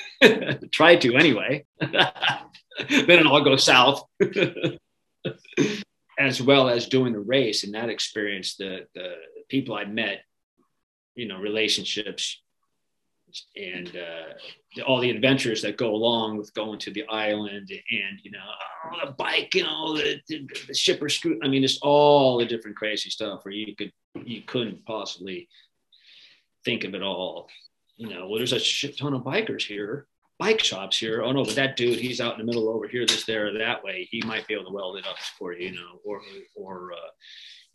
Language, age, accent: English, 40-59, American